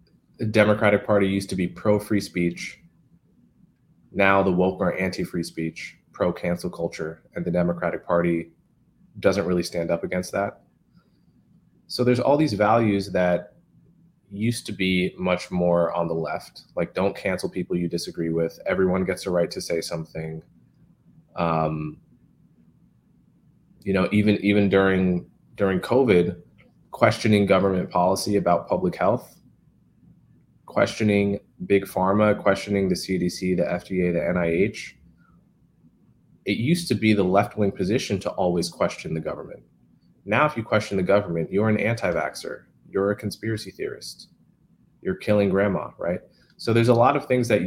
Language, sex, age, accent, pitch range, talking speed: English, male, 20-39, American, 85-105 Hz, 145 wpm